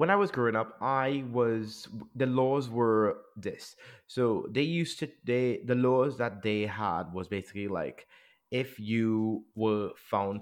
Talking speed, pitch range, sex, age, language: 160 wpm, 95-110 Hz, male, 30-49, English